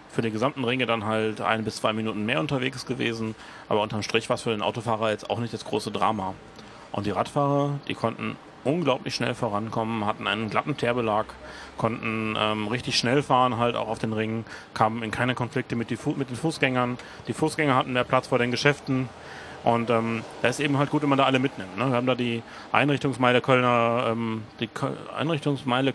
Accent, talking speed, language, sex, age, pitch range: German, 210 wpm, German, male, 30-49, 115-135 Hz